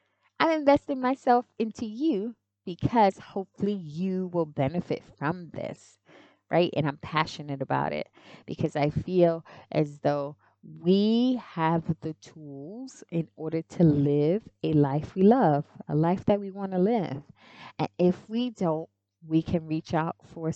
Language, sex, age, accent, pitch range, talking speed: English, female, 20-39, American, 145-180 Hz, 150 wpm